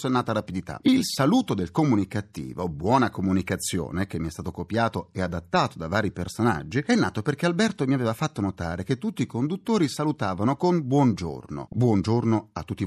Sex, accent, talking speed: male, native, 175 wpm